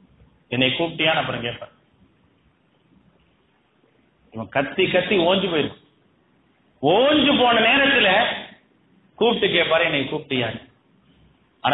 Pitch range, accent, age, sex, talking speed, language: 140-210 Hz, Indian, 30-49, male, 75 wpm, English